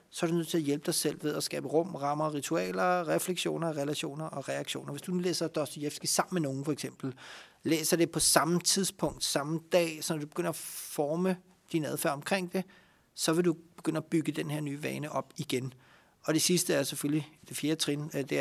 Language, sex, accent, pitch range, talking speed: Danish, male, native, 140-165 Hz, 220 wpm